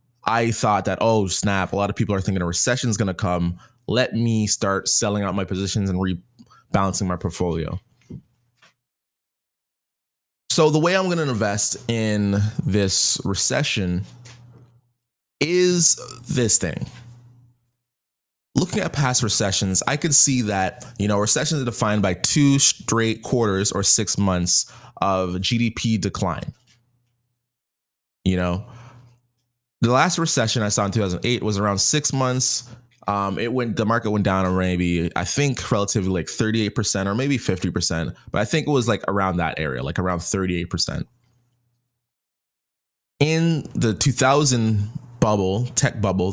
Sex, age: male, 20-39